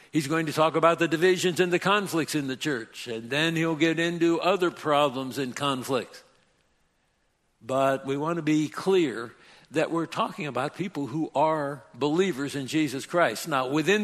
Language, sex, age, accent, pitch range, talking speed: English, male, 60-79, American, 140-170 Hz, 175 wpm